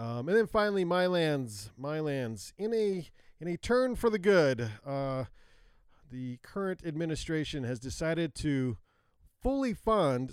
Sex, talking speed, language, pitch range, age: male, 145 wpm, English, 105-145 Hz, 40-59